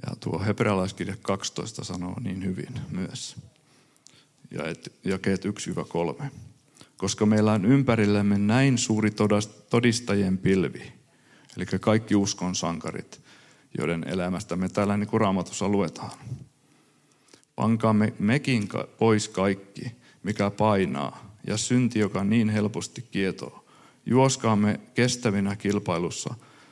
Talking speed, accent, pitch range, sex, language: 105 wpm, native, 95-120 Hz, male, Finnish